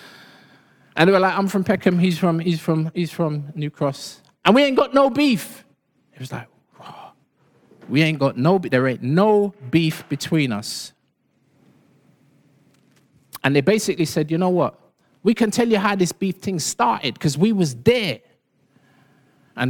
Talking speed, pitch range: 175 wpm, 135-190 Hz